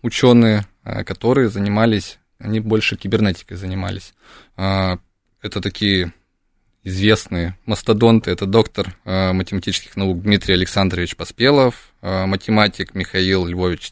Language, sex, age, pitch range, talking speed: Russian, male, 20-39, 95-110 Hz, 90 wpm